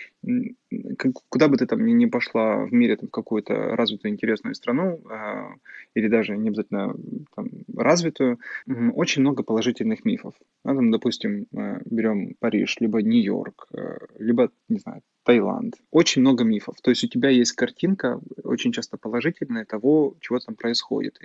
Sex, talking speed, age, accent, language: male, 140 wpm, 20-39, native, Russian